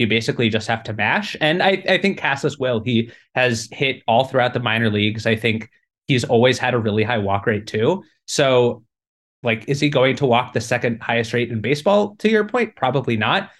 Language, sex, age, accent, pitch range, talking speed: English, male, 20-39, American, 115-150 Hz, 215 wpm